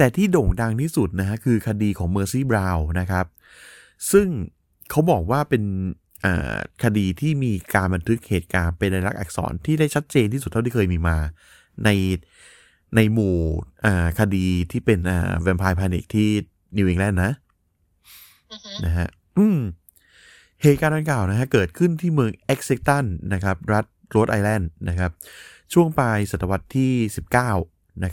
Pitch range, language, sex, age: 90-120 Hz, Thai, male, 20-39